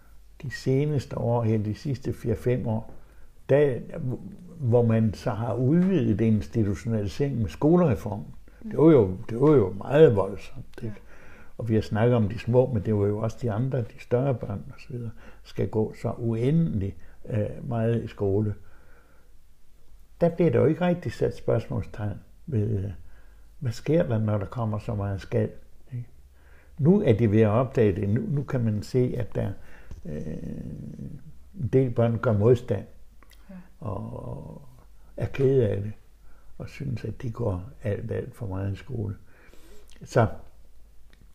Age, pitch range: 60-79, 100-135 Hz